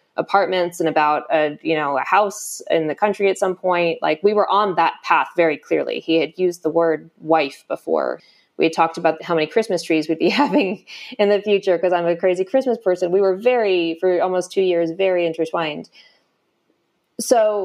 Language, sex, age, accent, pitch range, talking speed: English, female, 20-39, American, 165-205 Hz, 200 wpm